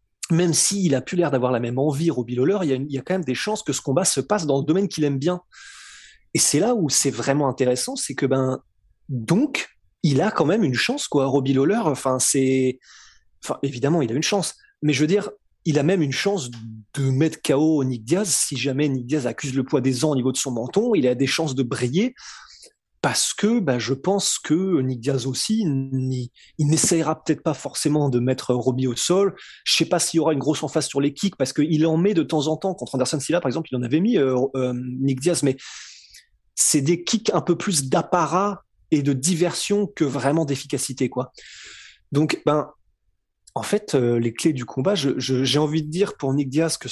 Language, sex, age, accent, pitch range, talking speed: French, male, 20-39, French, 130-170 Hz, 235 wpm